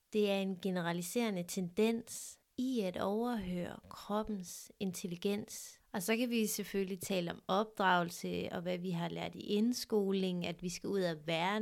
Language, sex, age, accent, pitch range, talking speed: Danish, female, 30-49, native, 195-235 Hz, 160 wpm